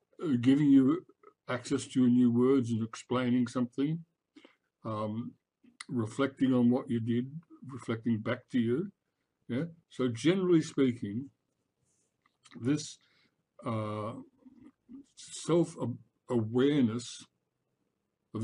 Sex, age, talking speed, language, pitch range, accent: male, 60-79, 95 wpm, English, 115-140 Hz, American